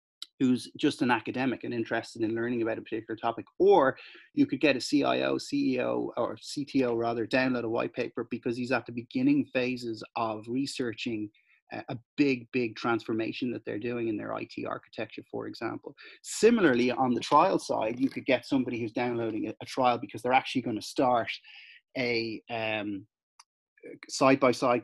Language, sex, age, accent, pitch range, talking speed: English, male, 30-49, Irish, 120-170 Hz, 165 wpm